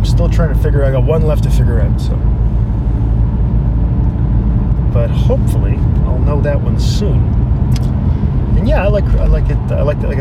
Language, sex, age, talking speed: English, male, 30-49, 190 wpm